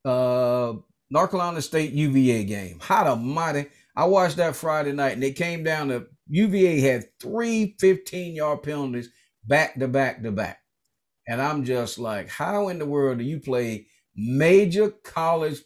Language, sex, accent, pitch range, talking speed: English, male, American, 140-185 Hz, 155 wpm